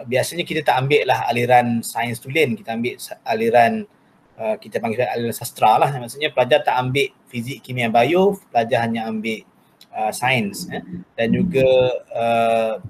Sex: male